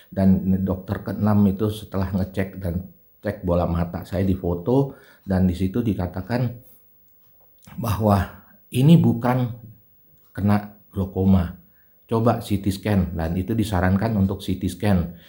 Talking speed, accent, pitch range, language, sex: 125 wpm, native, 95-110 Hz, Indonesian, male